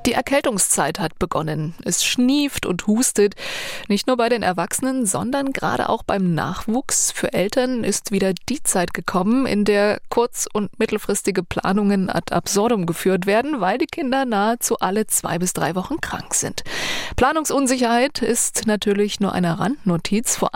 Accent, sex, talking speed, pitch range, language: German, female, 155 wpm, 180-235 Hz, German